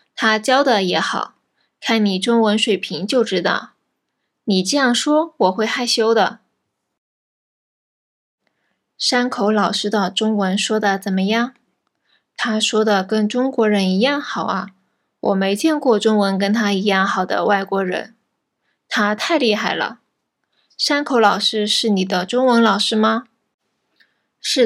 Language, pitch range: Japanese, 195-245 Hz